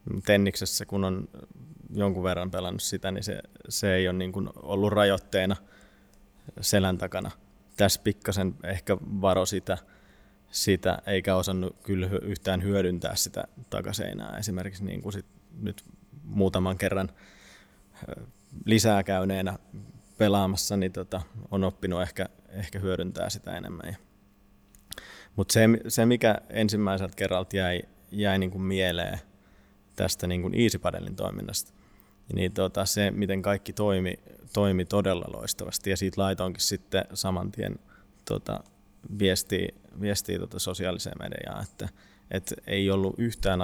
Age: 20-39